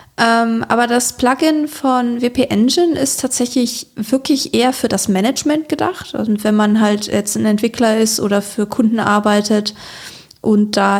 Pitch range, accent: 195-235 Hz, German